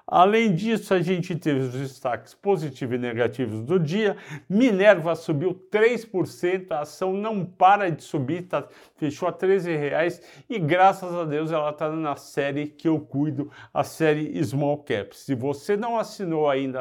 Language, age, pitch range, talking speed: Portuguese, 50-69, 145-180 Hz, 165 wpm